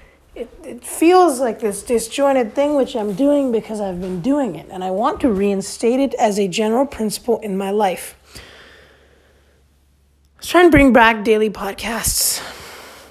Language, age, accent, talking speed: English, 20-39, American, 165 wpm